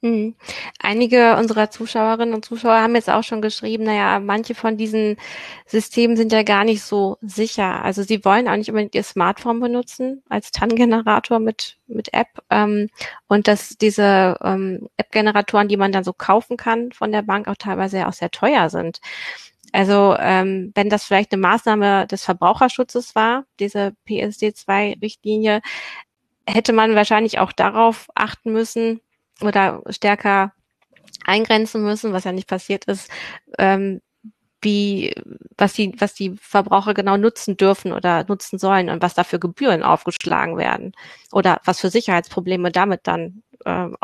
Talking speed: 150 wpm